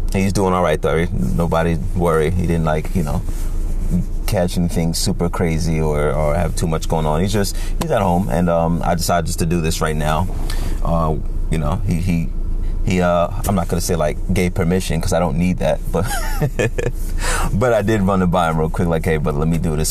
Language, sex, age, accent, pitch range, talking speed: English, male, 30-49, American, 80-95 Hz, 220 wpm